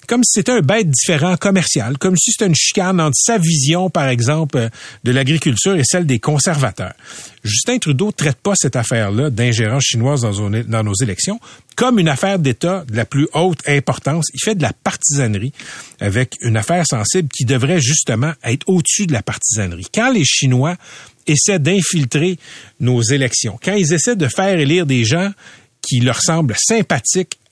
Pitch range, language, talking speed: 120-175 Hz, French, 175 wpm